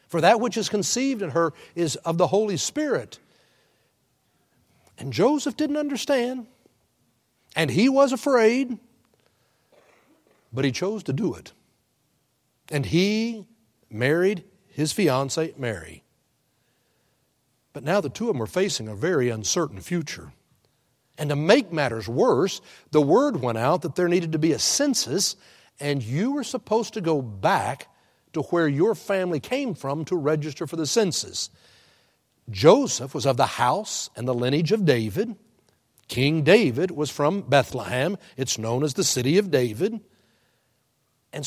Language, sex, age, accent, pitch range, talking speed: English, male, 60-79, American, 145-220 Hz, 145 wpm